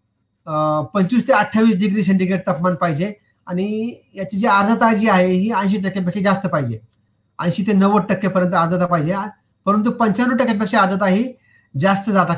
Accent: native